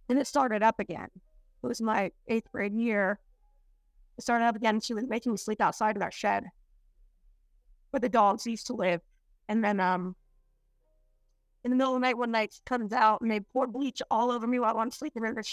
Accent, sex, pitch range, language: American, female, 215-260 Hz, English